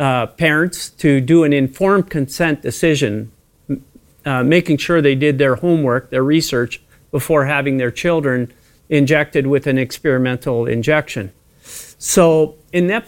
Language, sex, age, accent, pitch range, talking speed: English, male, 40-59, American, 135-165 Hz, 130 wpm